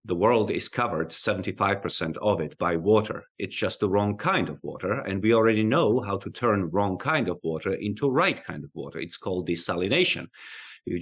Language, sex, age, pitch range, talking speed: English, male, 40-59, 100-125 Hz, 195 wpm